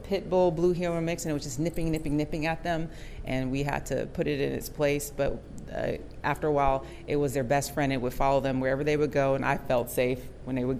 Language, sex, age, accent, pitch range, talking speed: English, female, 40-59, American, 140-190 Hz, 260 wpm